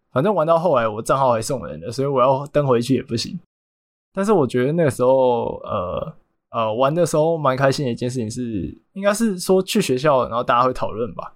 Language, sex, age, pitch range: Chinese, male, 20-39, 120-155 Hz